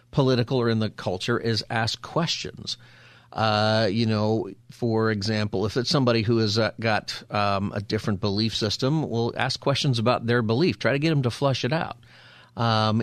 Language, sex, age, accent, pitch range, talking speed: English, male, 40-59, American, 105-125 Hz, 185 wpm